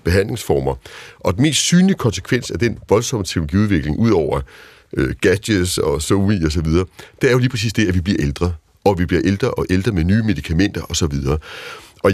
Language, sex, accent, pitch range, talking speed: Danish, male, native, 90-125 Hz, 205 wpm